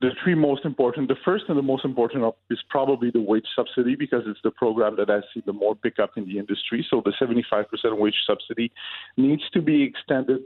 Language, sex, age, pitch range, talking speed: English, male, 50-69, 115-145 Hz, 220 wpm